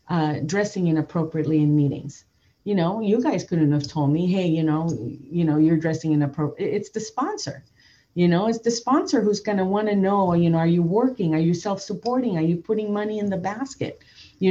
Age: 40-59